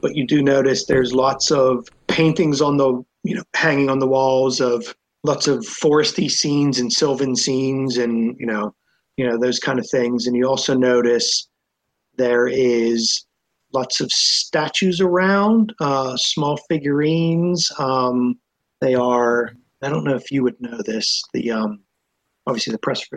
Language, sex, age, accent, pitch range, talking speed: English, male, 30-49, American, 125-155 Hz, 160 wpm